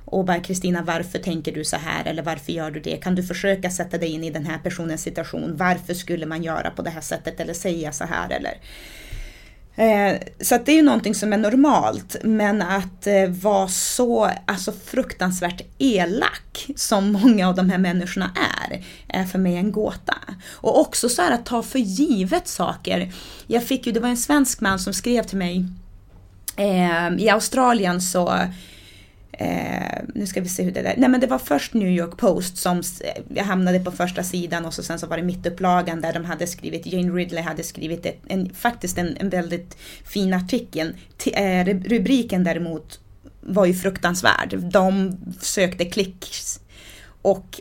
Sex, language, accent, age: female, Swedish, native, 30-49